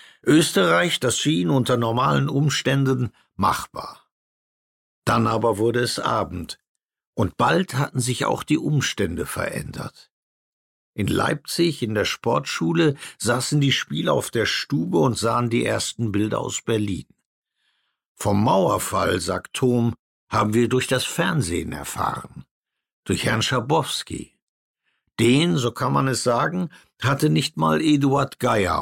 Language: German